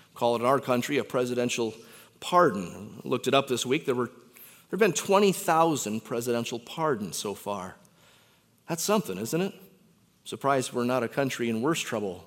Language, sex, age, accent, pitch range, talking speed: English, male, 30-49, American, 120-195 Hz, 180 wpm